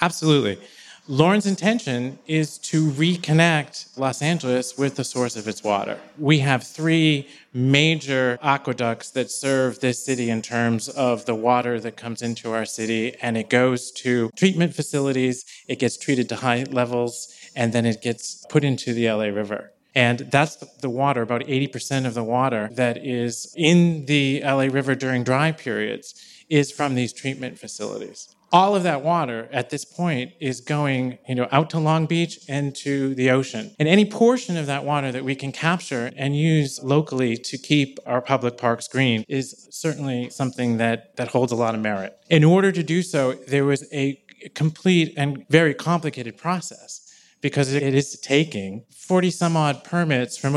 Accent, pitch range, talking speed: American, 125-155 Hz, 170 wpm